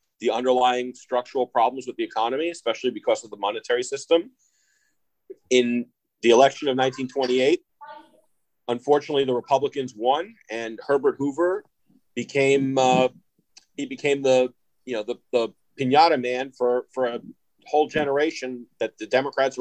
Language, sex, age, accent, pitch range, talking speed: English, male, 40-59, American, 125-155 Hz, 135 wpm